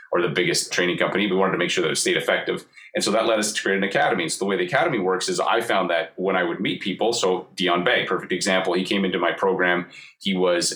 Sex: male